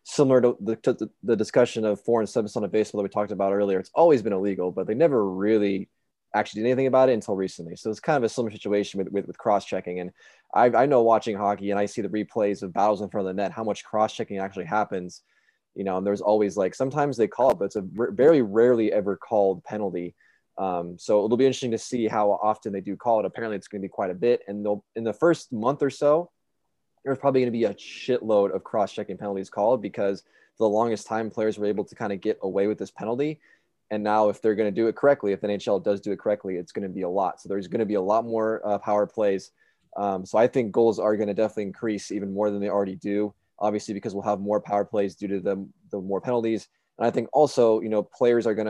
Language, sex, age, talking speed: English, male, 20-39, 260 wpm